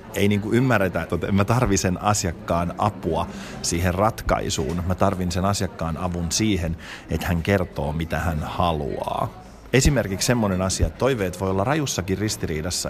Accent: native